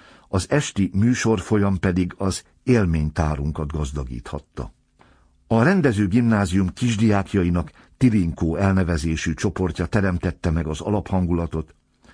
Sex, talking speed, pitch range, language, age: male, 90 wpm, 85-105 Hz, Hungarian, 60-79